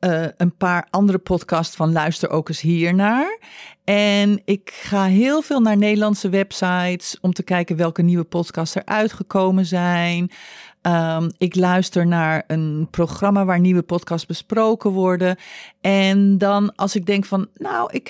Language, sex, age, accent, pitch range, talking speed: Dutch, female, 40-59, Dutch, 170-210 Hz, 155 wpm